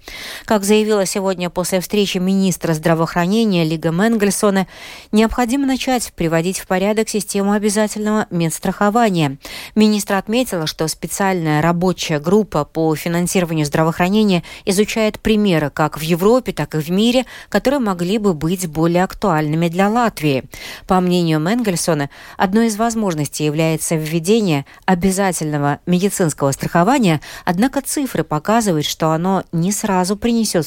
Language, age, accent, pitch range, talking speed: Russian, 40-59, native, 160-215 Hz, 120 wpm